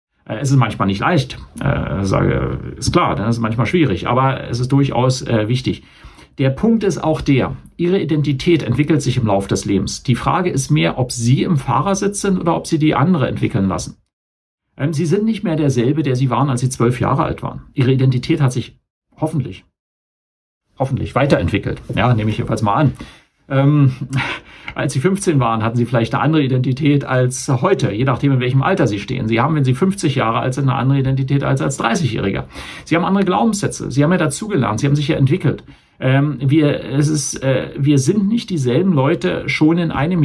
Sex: male